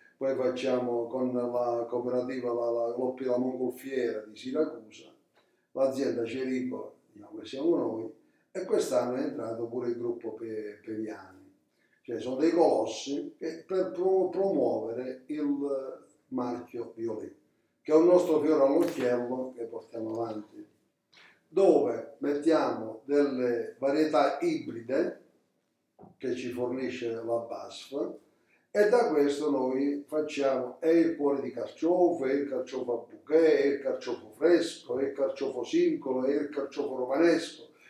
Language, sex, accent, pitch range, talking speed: Italian, male, native, 125-165 Hz, 125 wpm